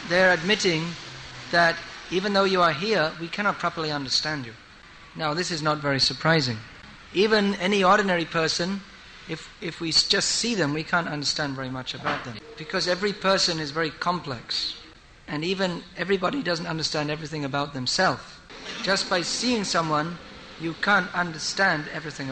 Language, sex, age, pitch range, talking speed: English, male, 50-69, 150-180 Hz, 160 wpm